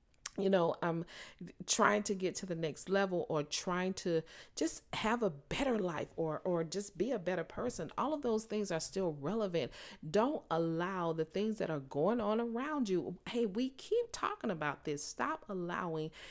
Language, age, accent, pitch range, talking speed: English, 40-59, American, 160-215 Hz, 185 wpm